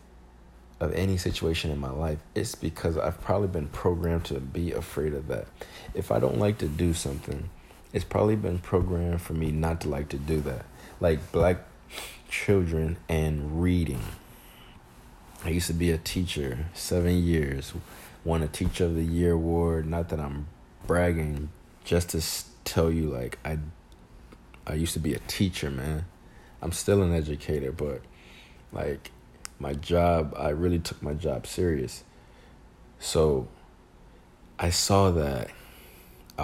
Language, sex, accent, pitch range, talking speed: English, male, American, 75-90 Hz, 150 wpm